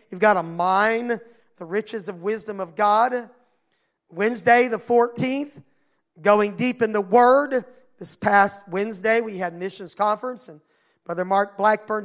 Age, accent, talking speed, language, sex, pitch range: 40-59, American, 145 wpm, English, male, 210-270 Hz